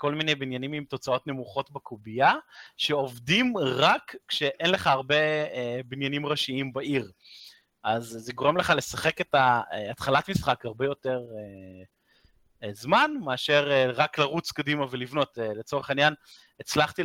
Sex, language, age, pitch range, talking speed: male, Hebrew, 20-39, 125-155 Hz, 135 wpm